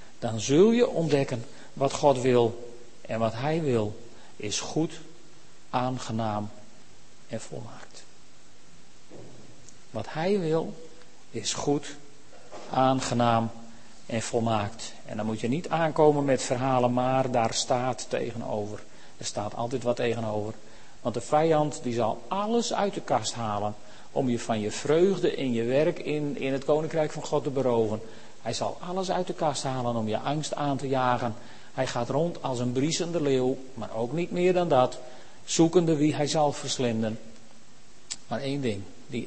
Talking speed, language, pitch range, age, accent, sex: 155 wpm, Dutch, 115-145 Hz, 40-59, Dutch, male